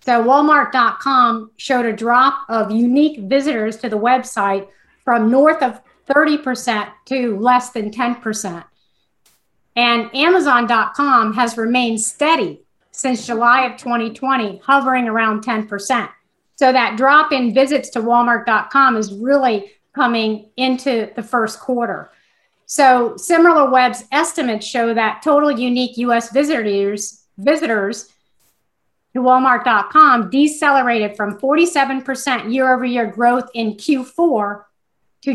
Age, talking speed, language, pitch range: 50-69, 110 wpm, English, 220-265 Hz